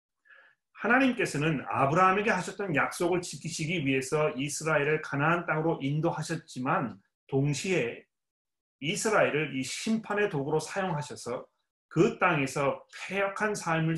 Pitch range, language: 135-175 Hz, Korean